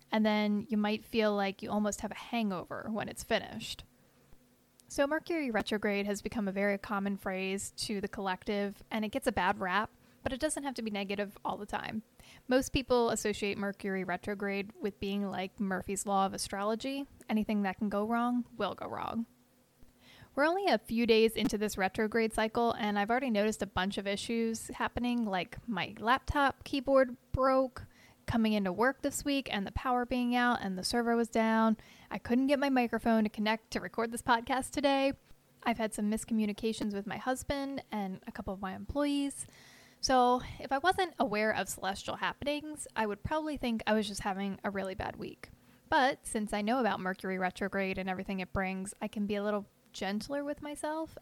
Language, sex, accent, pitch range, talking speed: English, female, American, 200-245 Hz, 190 wpm